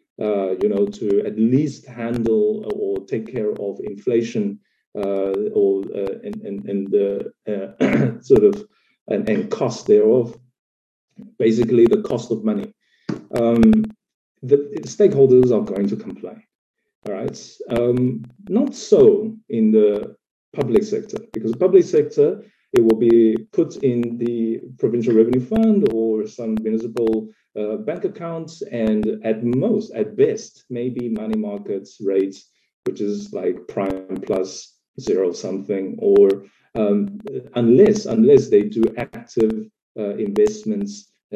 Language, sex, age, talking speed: English, male, 40-59, 130 wpm